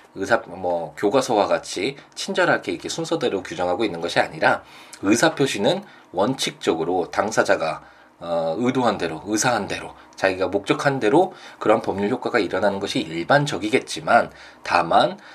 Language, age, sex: Korean, 20-39, male